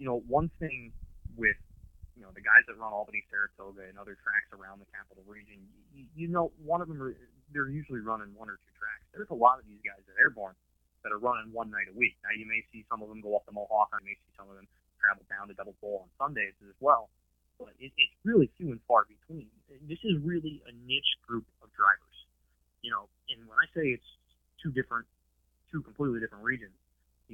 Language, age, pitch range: English, 20-39, 95-135 Hz